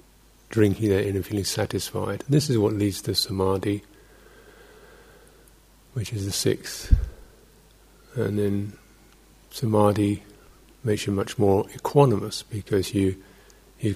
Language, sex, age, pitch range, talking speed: English, male, 50-69, 95-105 Hz, 115 wpm